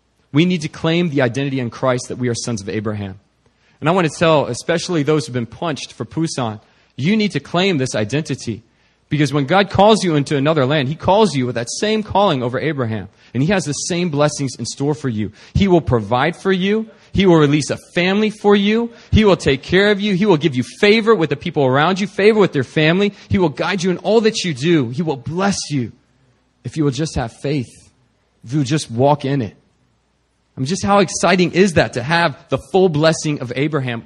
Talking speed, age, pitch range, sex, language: 235 wpm, 30-49, 130-190 Hz, male, English